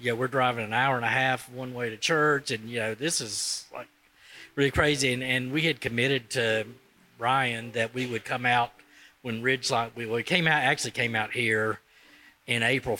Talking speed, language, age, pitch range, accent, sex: 210 wpm, English, 40-59, 110-120 Hz, American, male